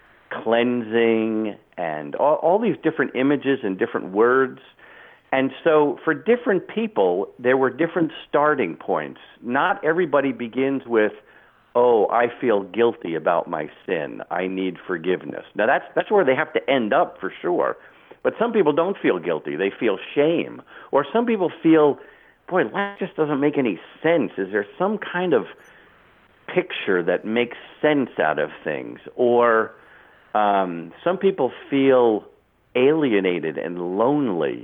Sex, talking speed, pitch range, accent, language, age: male, 145 wpm, 105-145 Hz, American, English, 50-69